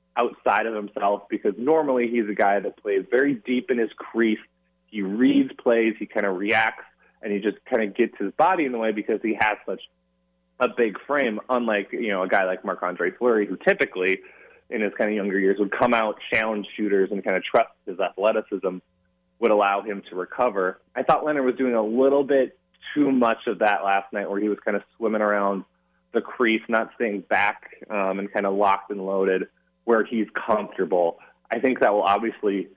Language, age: English, 20-39